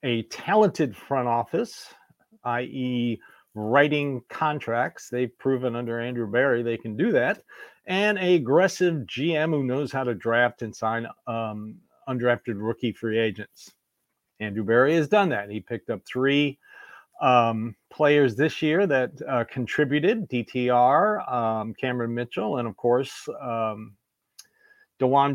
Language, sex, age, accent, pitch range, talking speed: English, male, 50-69, American, 120-165 Hz, 135 wpm